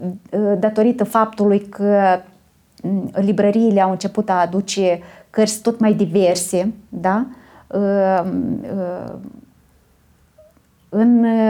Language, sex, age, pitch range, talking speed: Romanian, female, 30-49, 185-215 Hz, 75 wpm